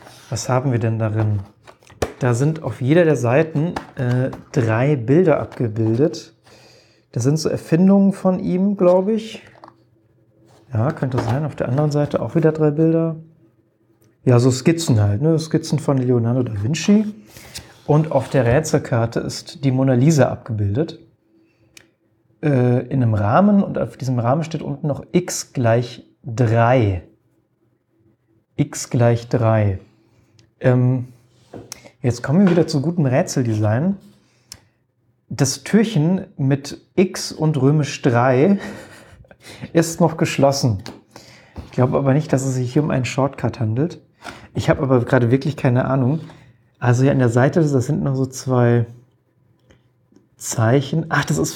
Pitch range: 120-155 Hz